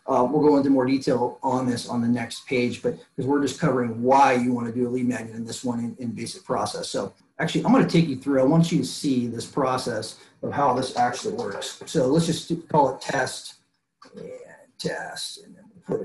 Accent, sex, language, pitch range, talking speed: American, male, English, 130-160 Hz, 240 wpm